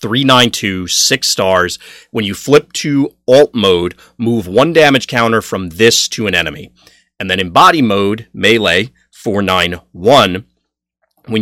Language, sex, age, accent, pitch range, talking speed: English, male, 30-49, American, 85-115 Hz, 135 wpm